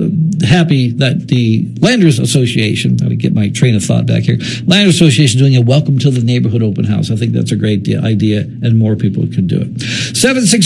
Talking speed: 210 wpm